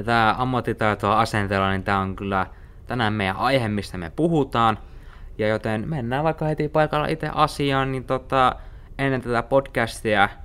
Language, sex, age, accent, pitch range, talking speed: Finnish, male, 20-39, native, 100-135 Hz, 150 wpm